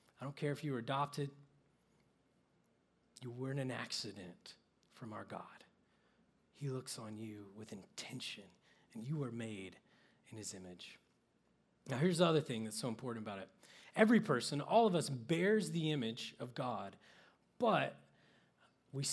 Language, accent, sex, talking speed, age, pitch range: English, American, male, 155 wpm, 30-49, 115-150 Hz